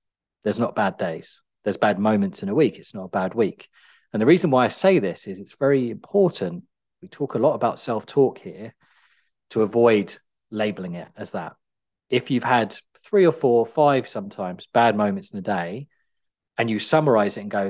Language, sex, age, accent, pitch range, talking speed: English, male, 30-49, British, 105-160 Hz, 195 wpm